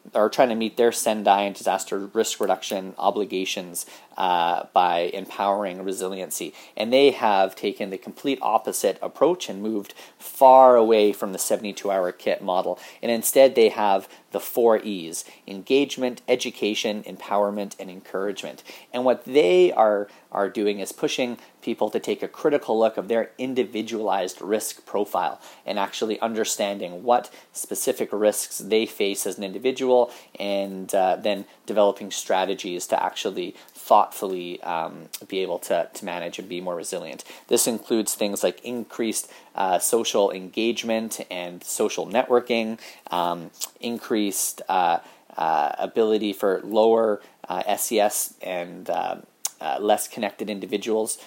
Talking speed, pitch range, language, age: 140 wpm, 95-115 Hz, English, 30-49